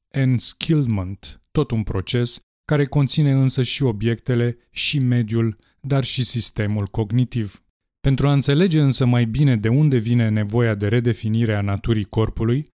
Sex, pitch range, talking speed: male, 110-140 Hz, 140 wpm